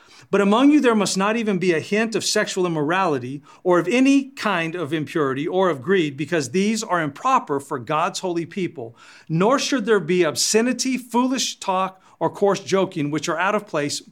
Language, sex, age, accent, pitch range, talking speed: English, male, 50-69, American, 155-220 Hz, 190 wpm